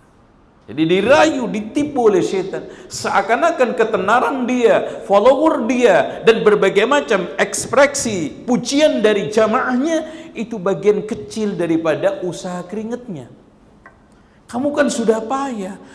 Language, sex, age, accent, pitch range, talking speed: Indonesian, male, 50-69, native, 155-245 Hz, 100 wpm